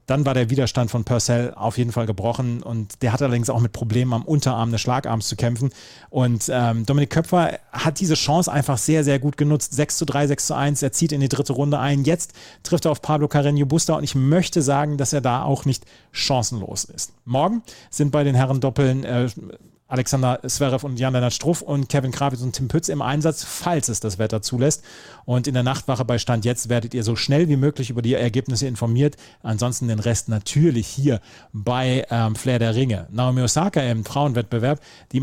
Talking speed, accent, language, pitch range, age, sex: 210 wpm, German, German, 120-145 Hz, 30-49, male